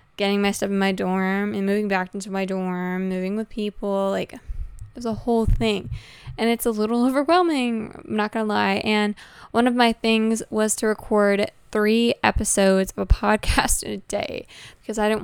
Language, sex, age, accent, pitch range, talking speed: English, female, 10-29, American, 195-225 Hz, 195 wpm